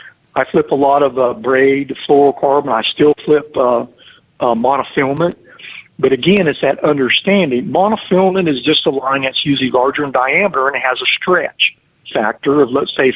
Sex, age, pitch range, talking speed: male, 50-69, 135-175 Hz, 175 wpm